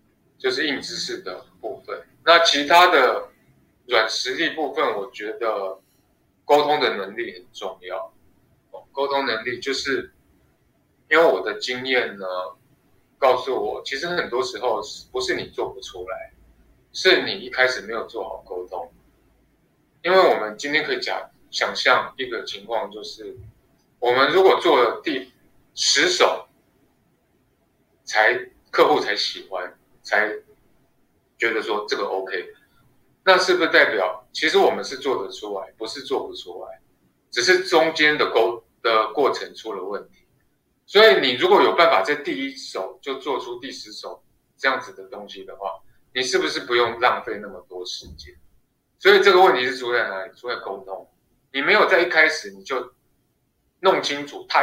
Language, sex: Chinese, male